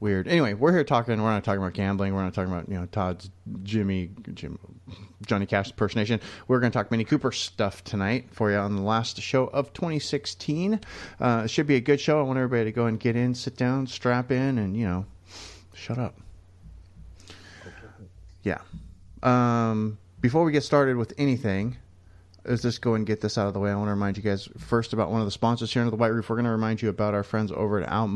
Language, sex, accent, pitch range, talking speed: English, male, American, 100-130 Hz, 230 wpm